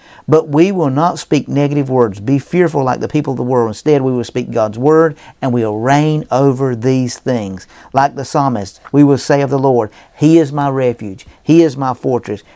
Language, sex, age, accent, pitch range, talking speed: English, male, 50-69, American, 120-150 Hz, 215 wpm